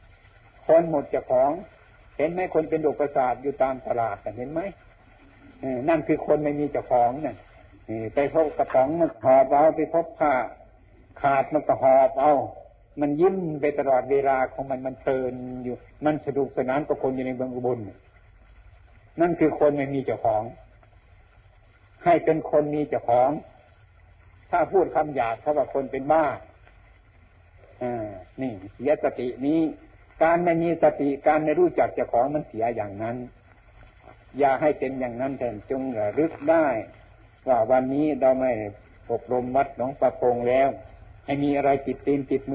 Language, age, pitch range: Thai, 60-79, 105-140 Hz